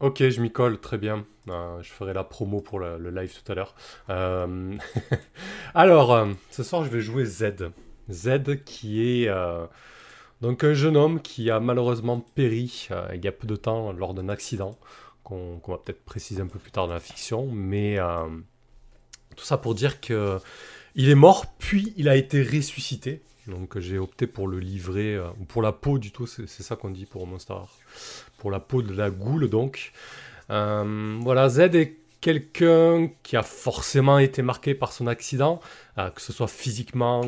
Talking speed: 195 wpm